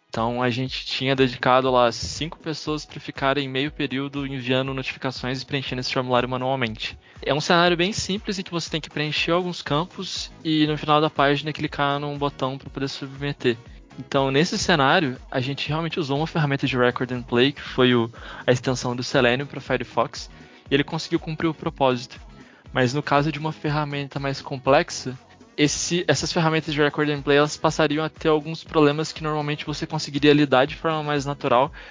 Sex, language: male, Portuguese